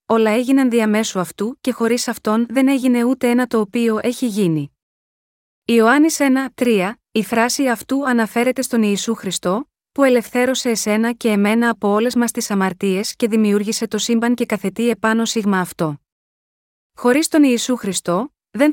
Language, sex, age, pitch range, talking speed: Greek, female, 20-39, 205-250 Hz, 155 wpm